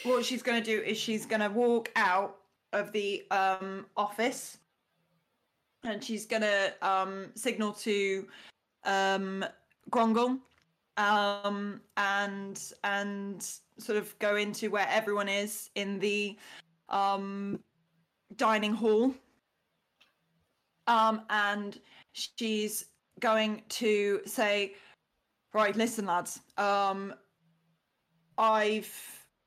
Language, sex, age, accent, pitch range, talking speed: English, female, 20-39, British, 195-220 Hz, 95 wpm